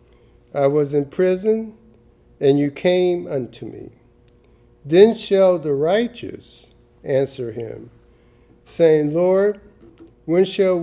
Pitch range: 140-190 Hz